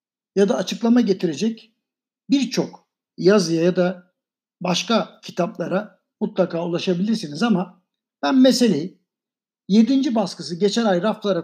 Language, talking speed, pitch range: Turkish, 105 wpm, 190-245 Hz